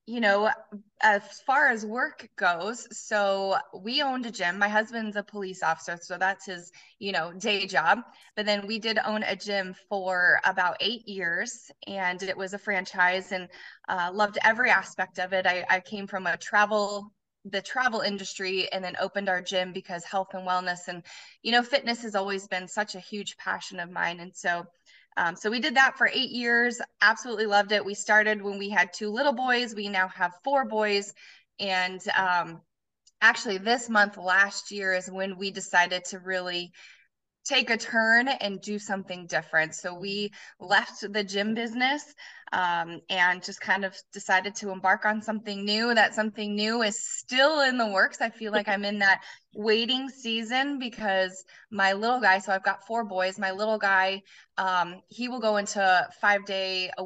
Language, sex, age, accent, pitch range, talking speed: English, female, 20-39, American, 185-225 Hz, 185 wpm